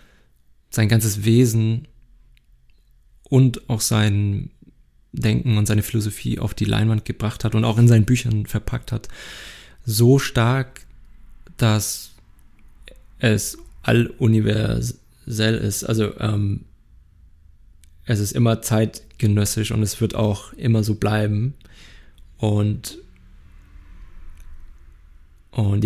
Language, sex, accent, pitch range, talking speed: German, male, German, 100-120 Hz, 100 wpm